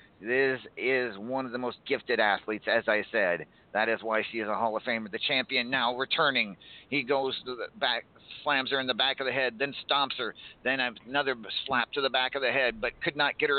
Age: 50-69